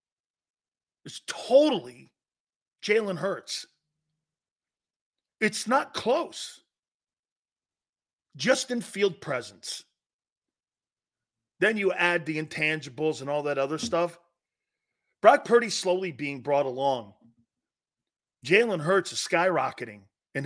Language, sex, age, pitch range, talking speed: English, male, 40-59, 145-235 Hz, 95 wpm